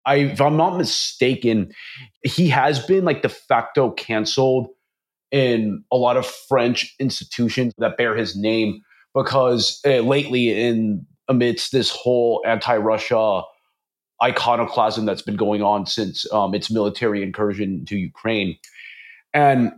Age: 30-49